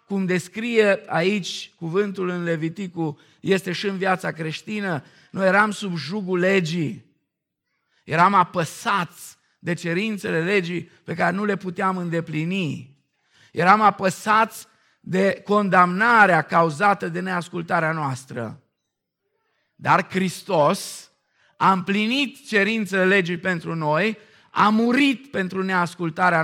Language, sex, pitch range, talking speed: Romanian, male, 160-200 Hz, 105 wpm